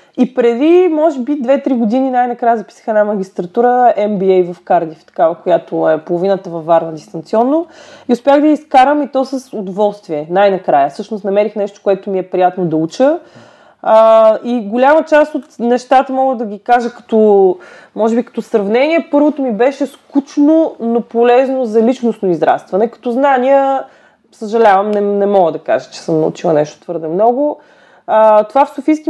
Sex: female